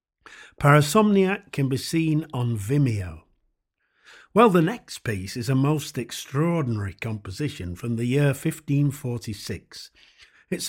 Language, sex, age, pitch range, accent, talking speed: English, male, 50-69, 125-165 Hz, British, 110 wpm